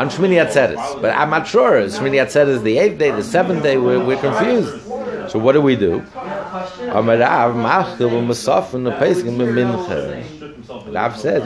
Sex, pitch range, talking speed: male, 120-160 Hz, 135 wpm